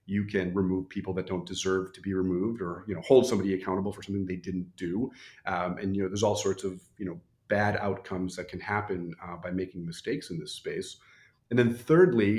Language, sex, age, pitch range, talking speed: English, male, 40-59, 95-105 Hz, 225 wpm